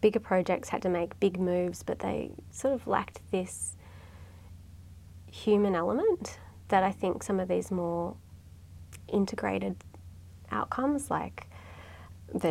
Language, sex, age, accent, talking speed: English, female, 20-39, Australian, 125 wpm